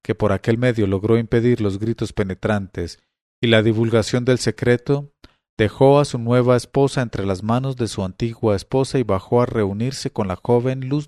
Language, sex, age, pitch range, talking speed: English, male, 40-59, 105-130 Hz, 185 wpm